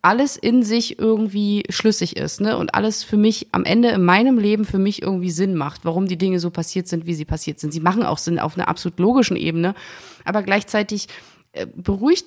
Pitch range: 175-210 Hz